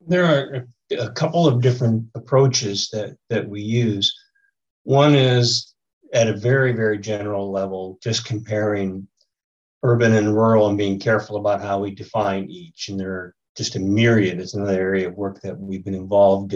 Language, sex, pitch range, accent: English, male, 100-115 Hz, American